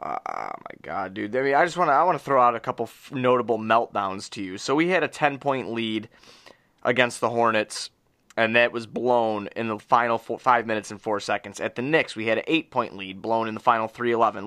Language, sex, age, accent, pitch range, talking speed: English, male, 20-39, American, 110-135 Hz, 230 wpm